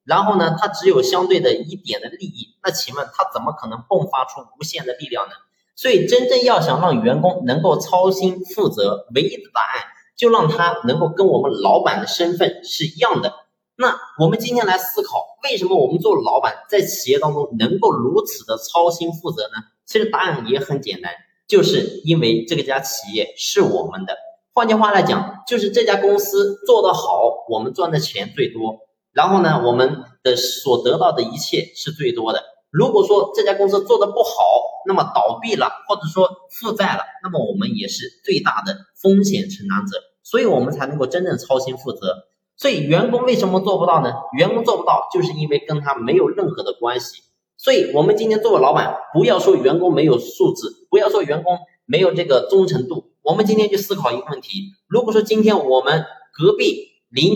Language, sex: Chinese, male